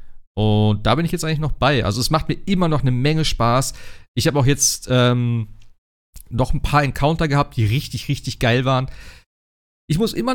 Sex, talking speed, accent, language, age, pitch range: male, 205 wpm, German, German, 40-59, 115-160 Hz